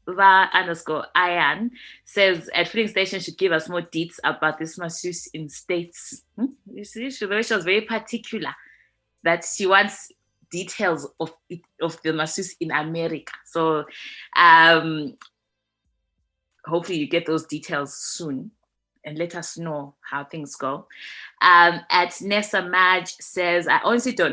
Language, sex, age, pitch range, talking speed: English, female, 20-39, 160-190 Hz, 135 wpm